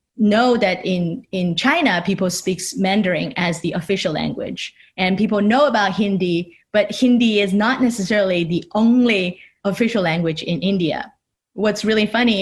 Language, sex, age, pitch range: Chinese, female, 20-39, 180-220 Hz